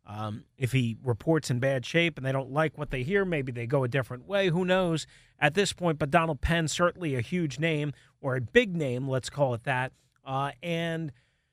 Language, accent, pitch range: English, American, 130-165 Hz